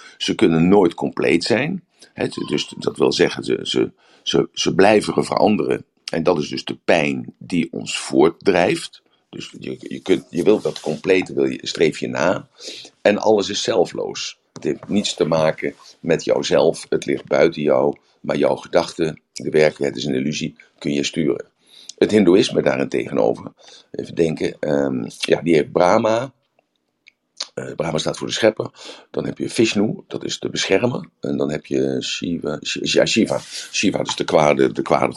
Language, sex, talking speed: Dutch, male, 170 wpm